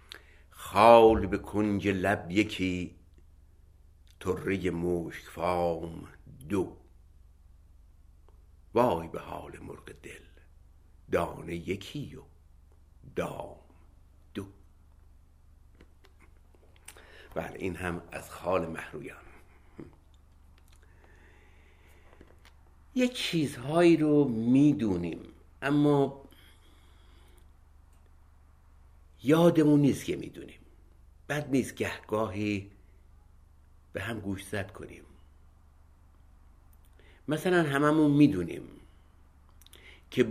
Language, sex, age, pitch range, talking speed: Persian, male, 60-79, 75-100 Hz, 70 wpm